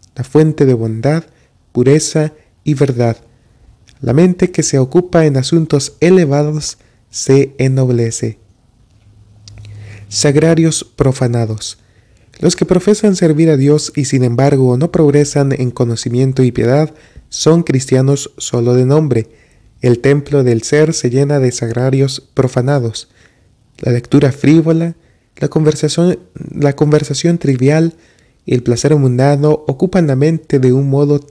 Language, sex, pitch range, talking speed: Spanish, male, 120-150 Hz, 125 wpm